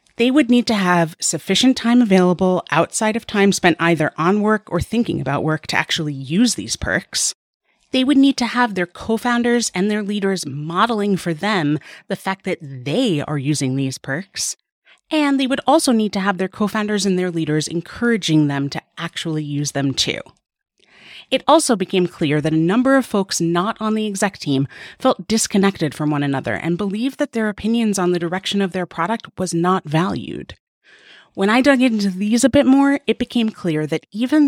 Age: 30-49